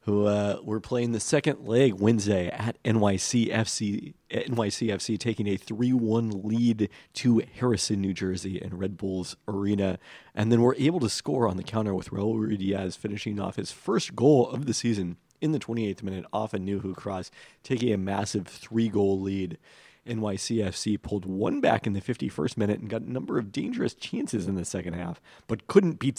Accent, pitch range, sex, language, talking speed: American, 95-115 Hz, male, English, 180 wpm